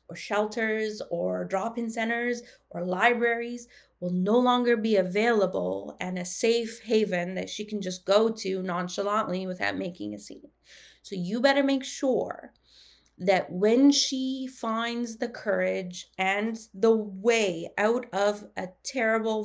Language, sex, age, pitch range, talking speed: English, female, 20-39, 180-230 Hz, 135 wpm